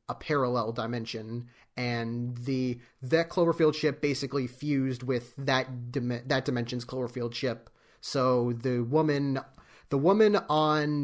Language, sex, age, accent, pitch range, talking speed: English, male, 30-49, American, 125-145 Hz, 125 wpm